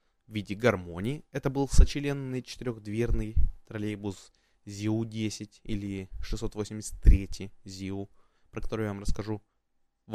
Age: 20-39